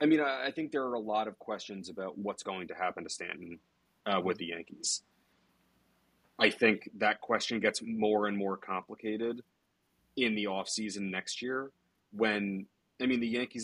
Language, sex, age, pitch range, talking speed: English, male, 30-49, 95-110 Hz, 175 wpm